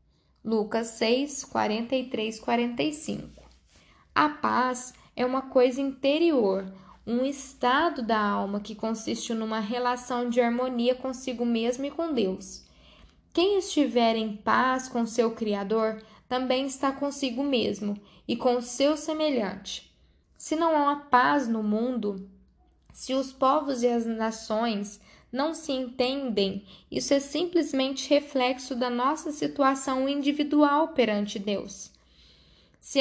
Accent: Brazilian